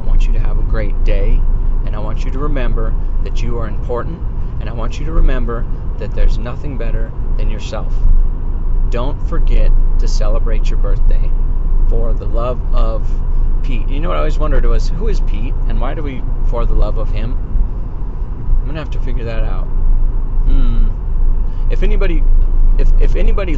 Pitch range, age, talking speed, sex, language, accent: 85-115 Hz, 40-59, 185 wpm, male, English, American